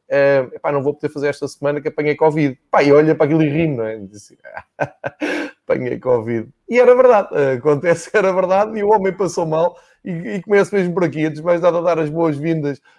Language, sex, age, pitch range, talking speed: Portuguese, male, 20-39, 135-170 Hz, 190 wpm